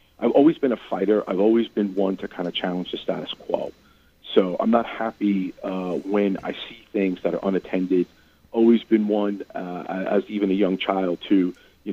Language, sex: English, male